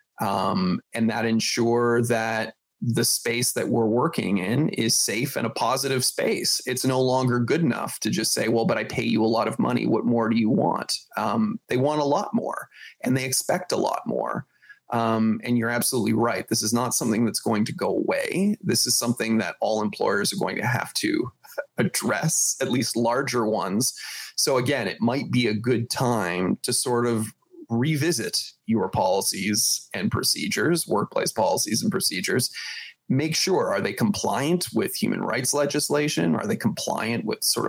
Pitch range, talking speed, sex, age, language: 115-145 Hz, 185 wpm, male, 30-49, English